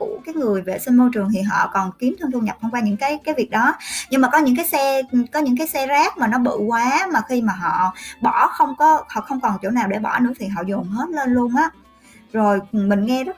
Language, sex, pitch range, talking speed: Vietnamese, male, 205-275 Hz, 275 wpm